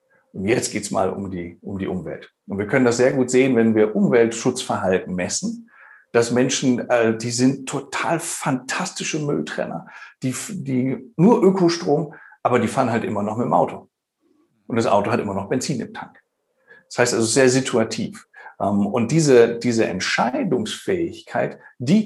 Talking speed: 170 wpm